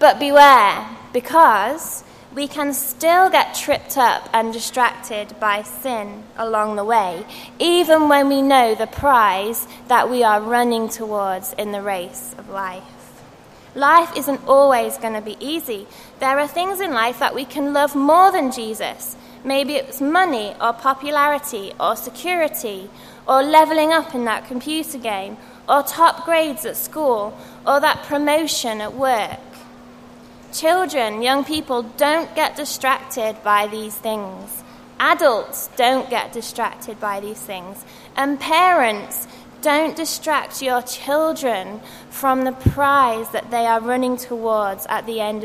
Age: 20-39